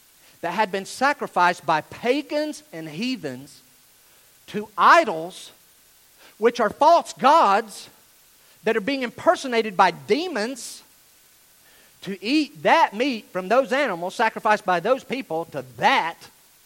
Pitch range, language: 150-235 Hz, English